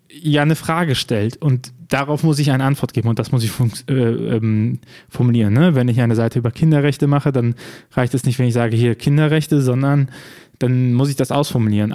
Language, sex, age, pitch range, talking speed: German, male, 20-39, 120-150 Hz, 210 wpm